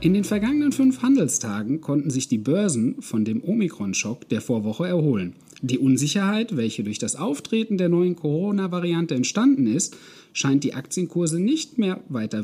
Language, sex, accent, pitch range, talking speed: German, male, German, 125-205 Hz, 155 wpm